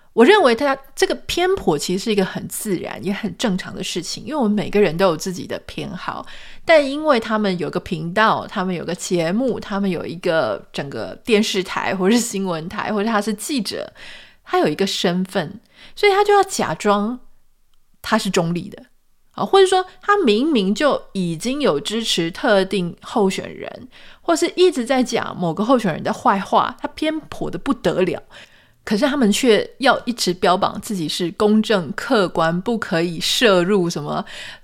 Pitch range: 190-240 Hz